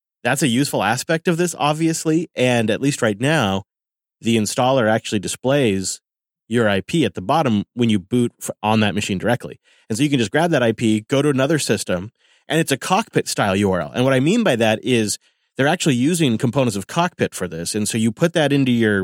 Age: 30-49